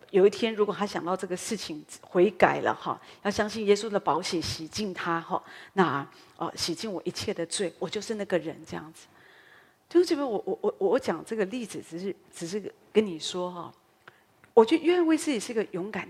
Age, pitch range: 40-59, 180-260 Hz